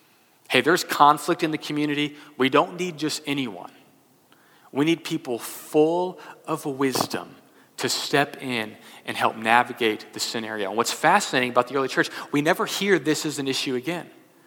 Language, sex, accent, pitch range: English, male, American, 125-155 Hz